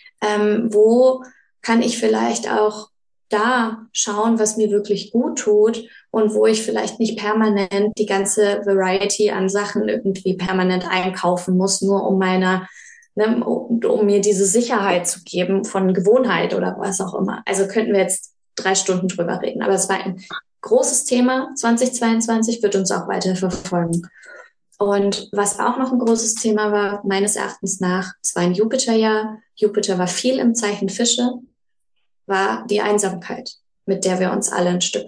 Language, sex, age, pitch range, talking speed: German, female, 20-39, 190-230 Hz, 165 wpm